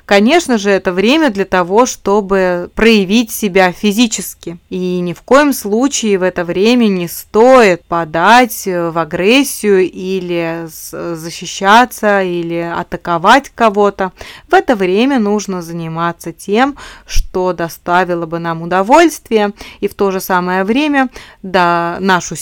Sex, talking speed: female, 125 wpm